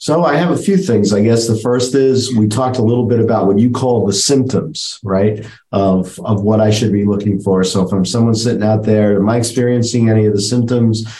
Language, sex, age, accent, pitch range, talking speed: English, male, 50-69, American, 100-130 Hz, 240 wpm